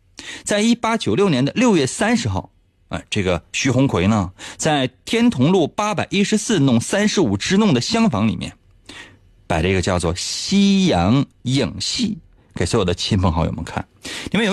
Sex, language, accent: male, Chinese, native